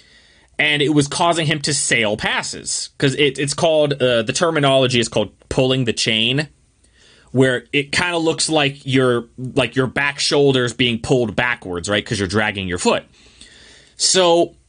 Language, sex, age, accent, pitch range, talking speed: English, male, 20-39, American, 125-170 Hz, 170 wpm